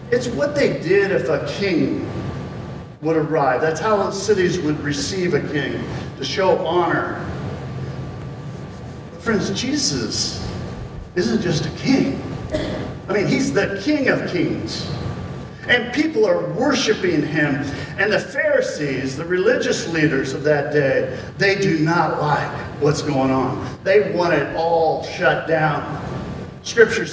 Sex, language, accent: male, English, American